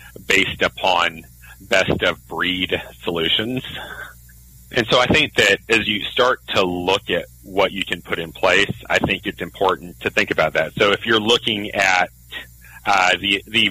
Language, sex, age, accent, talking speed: English, male, 40-59, American, 160 wpm